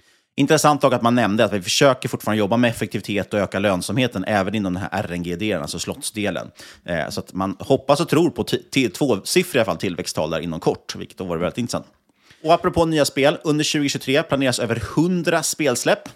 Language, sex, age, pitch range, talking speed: Swedish, male, 30-49, 100-140 Hz, 200 wpm